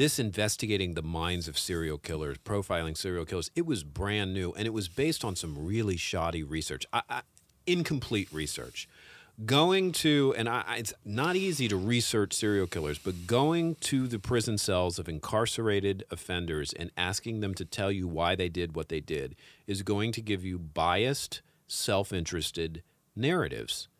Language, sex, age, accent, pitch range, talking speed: English, male, 40-59, American, 90-115 Hz, 160 wpm